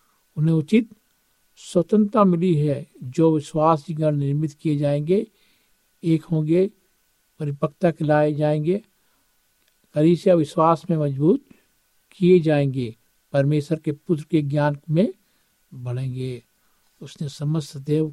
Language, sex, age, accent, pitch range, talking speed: Hindi, male, 60-79, native, 150-185 Hz, 105 wpm